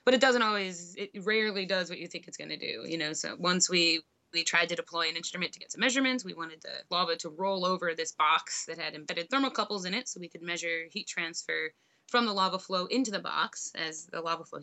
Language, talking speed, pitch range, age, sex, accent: English, 250 wpm, 165-205 Hz, 20-39, female, American